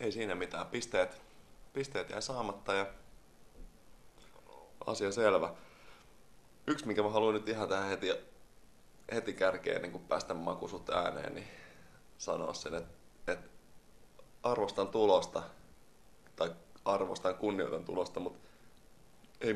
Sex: male